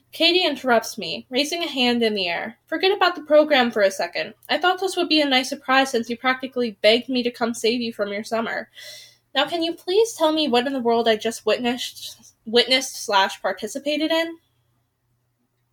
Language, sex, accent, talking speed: English, female, American, 200 wpm